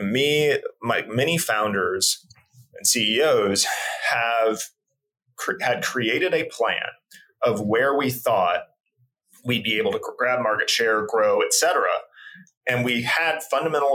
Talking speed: 125 wpm